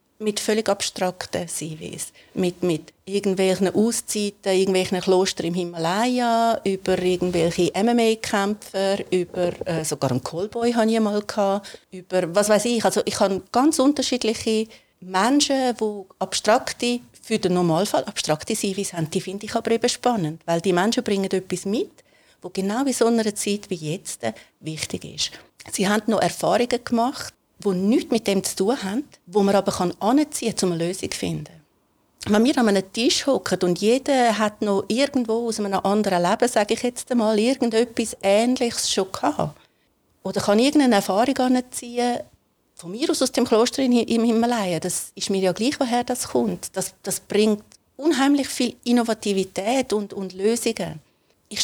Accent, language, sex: Austrian, German, female